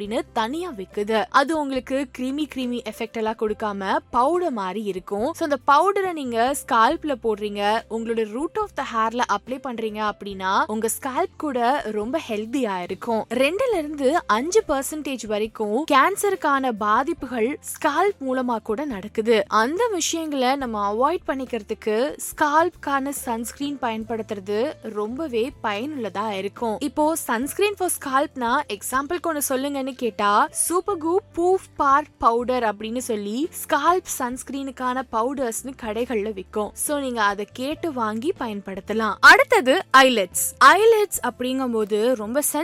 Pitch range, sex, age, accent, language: 220-300 Hz, female, 20-39, native, Tamil